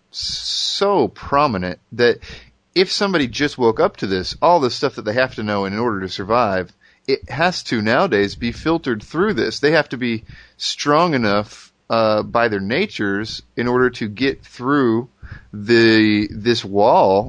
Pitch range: 105-125 Hz